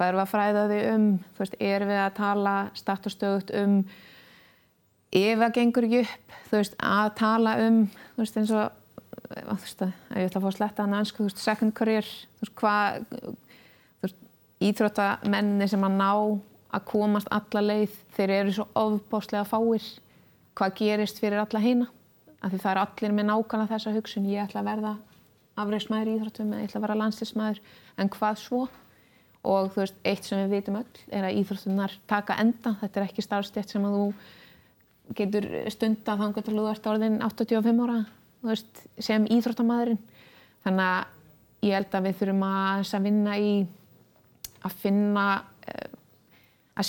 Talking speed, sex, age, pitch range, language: 160 wpm, female, 20-39, 200-225 Hz, English